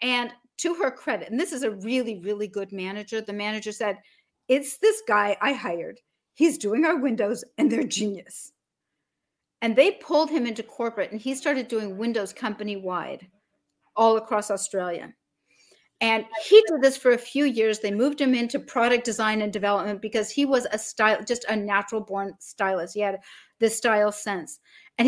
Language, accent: English, American